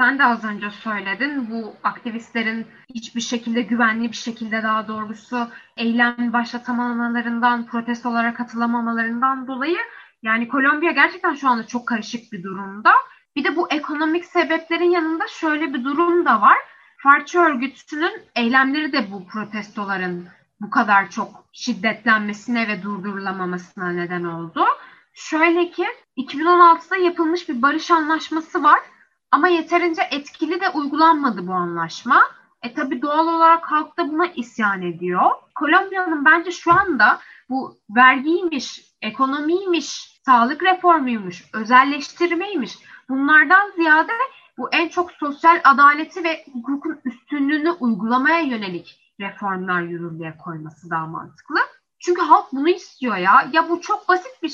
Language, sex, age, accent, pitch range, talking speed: Turkish, female, 10-29, native, 225-335 Hz, 125 wpm